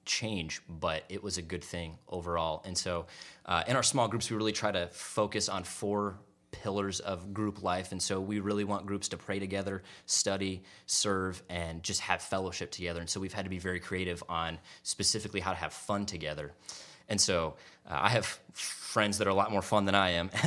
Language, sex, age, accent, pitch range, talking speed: English, male, 20-39, American, 85-100 Hz, 210 wpm